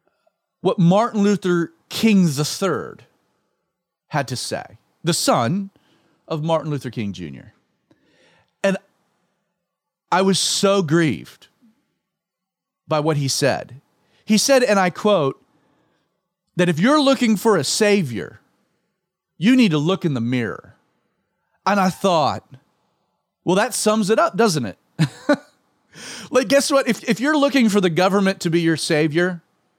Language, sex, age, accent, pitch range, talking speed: English, male, 40-59, American, 170-245 Hz, 135 wpm